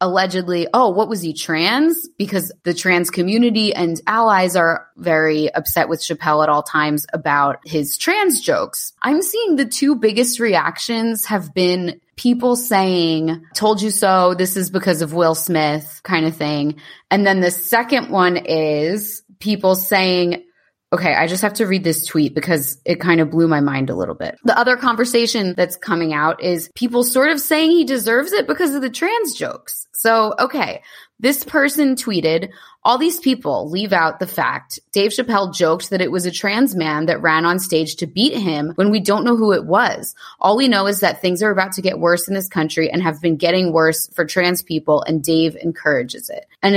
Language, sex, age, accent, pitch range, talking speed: English, female, 20-39, American, 165-215 Hz, 195 wpm